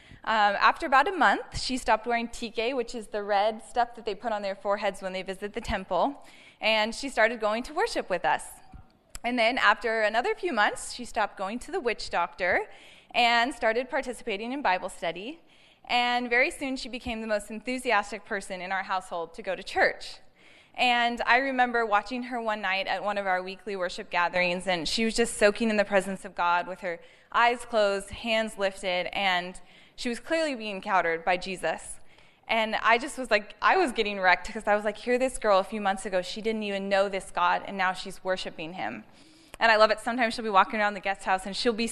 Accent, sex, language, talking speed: American, female, English, 220 wpm